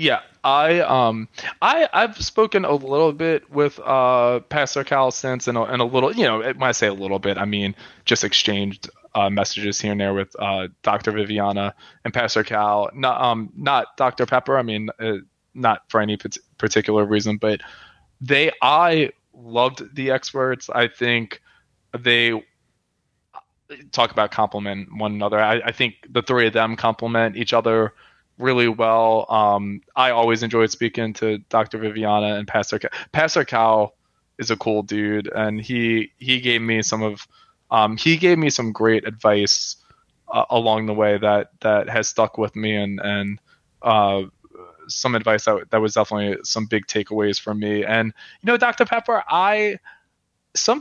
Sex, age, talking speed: male, 20-39, 170 wpm